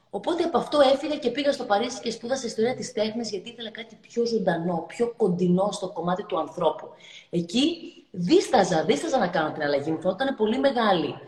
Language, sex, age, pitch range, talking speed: Greek, female, 30-49, 165-225 Hz, 180 wpm